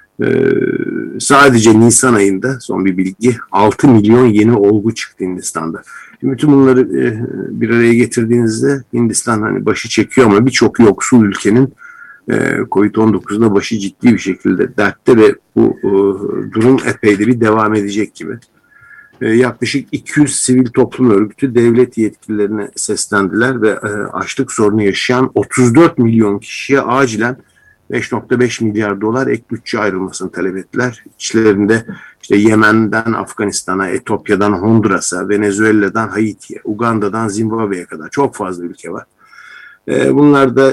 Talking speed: 125 wpm